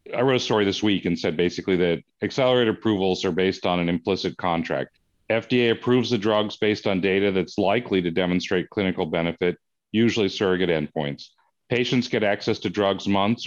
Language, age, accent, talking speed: English, 40-59, American, 180 wpm